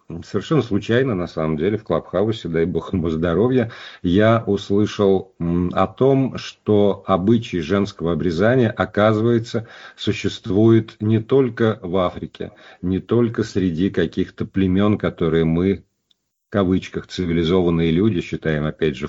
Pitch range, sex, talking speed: 90-115 Hz, male, 125 wpm